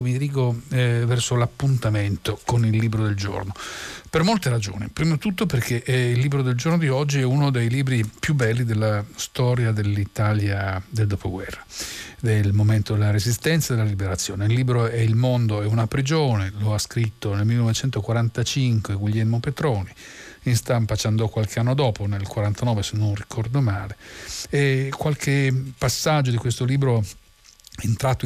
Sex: male